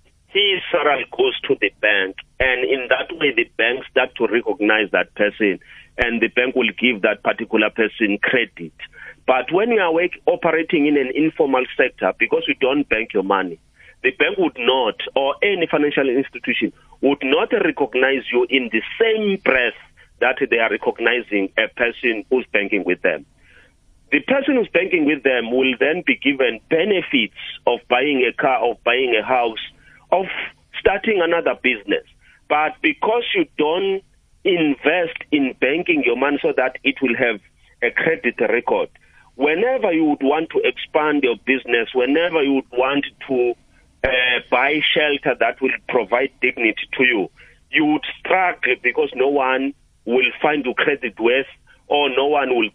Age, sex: 40-59, male